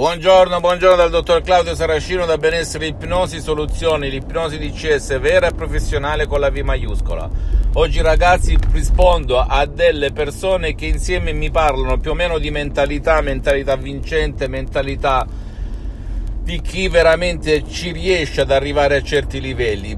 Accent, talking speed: native, 140 wpm